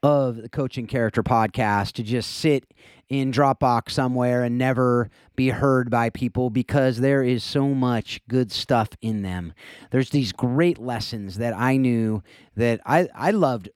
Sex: male